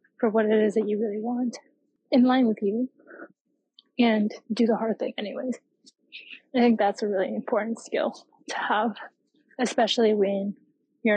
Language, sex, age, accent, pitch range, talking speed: English, female, 20-39, American, 205-245 Hz, 160 wpm